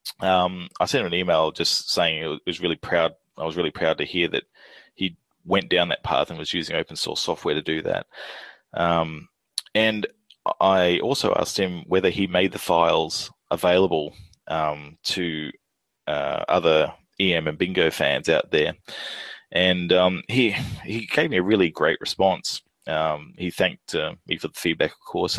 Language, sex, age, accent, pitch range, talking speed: English, male, 20-39, Australian, 80-100 Hz, 180 wpm